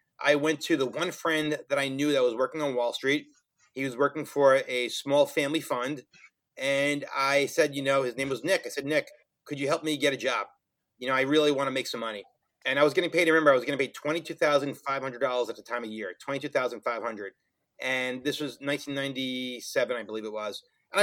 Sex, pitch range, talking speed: male, 135-155 Hz, 225 wpm